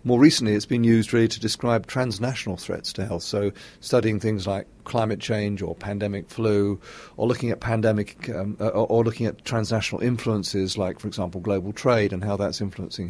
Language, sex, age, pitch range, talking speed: English, male, 40-59, 105-120 Hz, 185 wpm